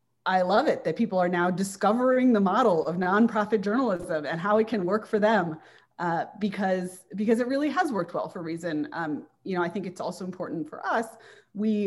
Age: 30-49